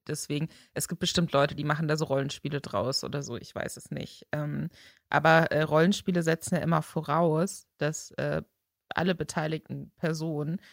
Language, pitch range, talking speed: German, 150-170 Hz, 170 wpm